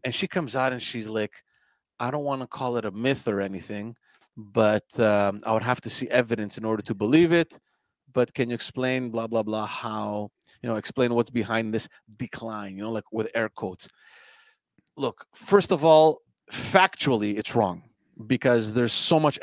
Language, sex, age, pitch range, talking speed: English, male, 30-49, 110-145 Hz, 190 wpm